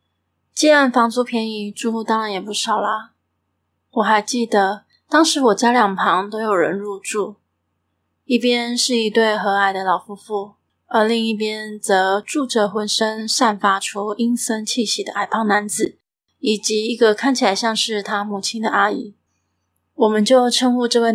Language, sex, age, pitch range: Chinese, female, 20-39, 205-235 Hz